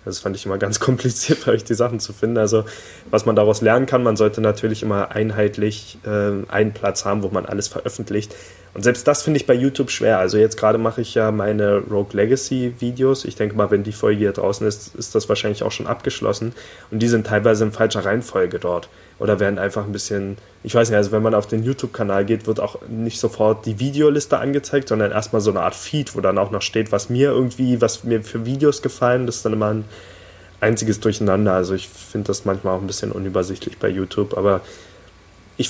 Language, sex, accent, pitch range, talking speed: German, male, German, 100-115 Hz, 220 wpm